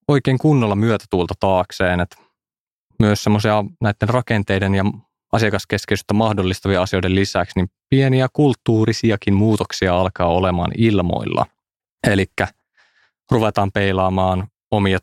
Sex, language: male, Finnish